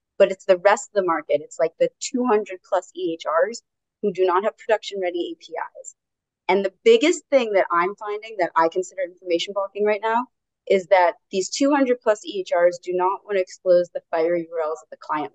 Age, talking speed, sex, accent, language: 30-49, 200 wpm, female, American, English